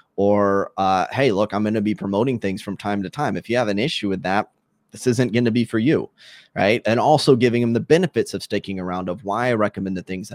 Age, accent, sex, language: 20-39, American, male, English